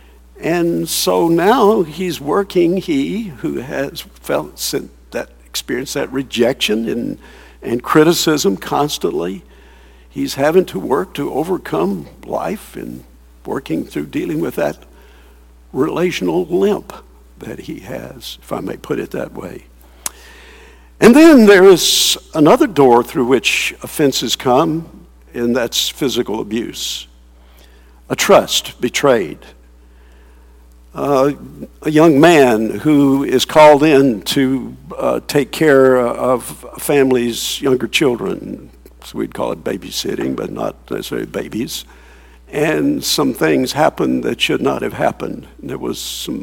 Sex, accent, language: male, American, English